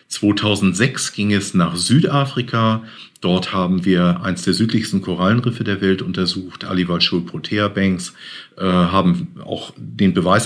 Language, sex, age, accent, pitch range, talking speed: German, male, 50-69, German, 90-115 Hz, 130 wpm